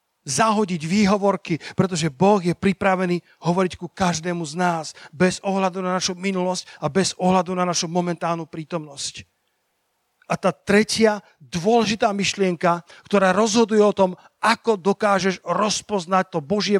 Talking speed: 130 wpm